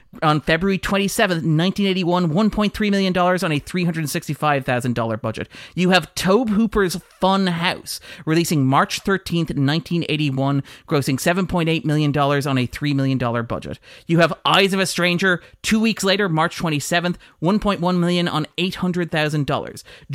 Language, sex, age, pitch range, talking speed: English, male, 30-49, 145-190 Hz, 120 wpm